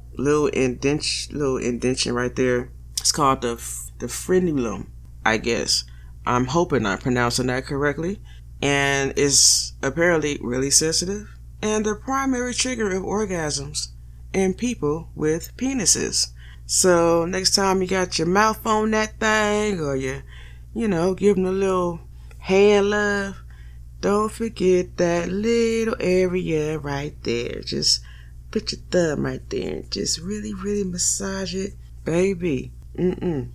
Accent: American